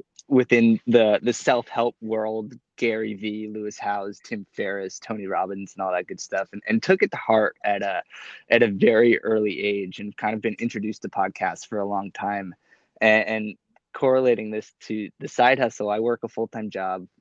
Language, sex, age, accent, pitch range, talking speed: English, male, 20-39, American, 100-115 Hz, 195 wpm